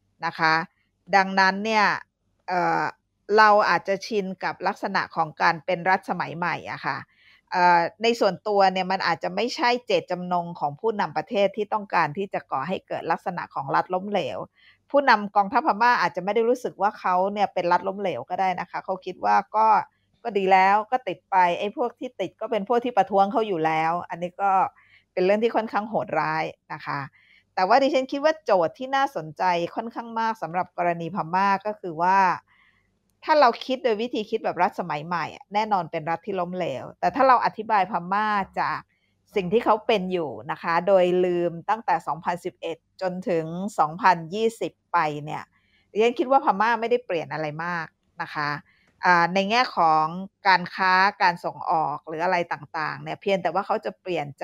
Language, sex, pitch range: Thai, female, 170-215 Hz